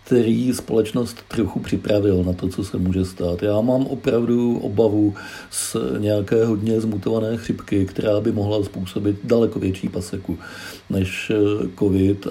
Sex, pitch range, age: male, 100-125 Hz, 50-69